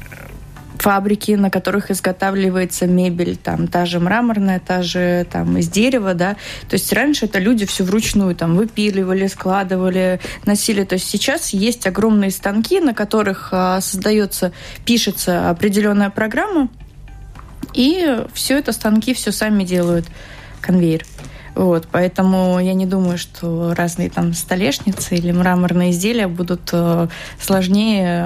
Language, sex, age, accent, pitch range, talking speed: Russian, female, 20-39, native, 180-210 Hz, 125 wpm